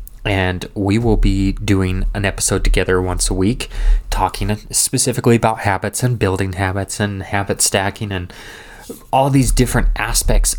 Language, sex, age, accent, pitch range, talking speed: English, male, 20-39, American, 95-110 Hz, 145 wpm